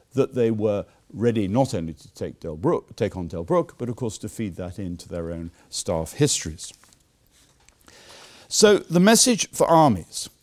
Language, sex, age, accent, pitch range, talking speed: English, male, 50-69, British, 90-125 Hz, 155 wpm